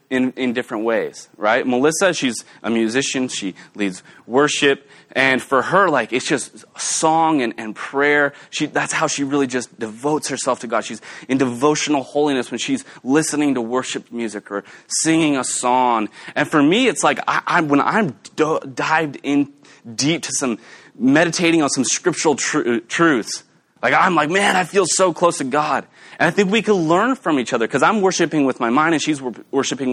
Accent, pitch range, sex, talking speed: American, 130-165 Hz, male, 190 wpm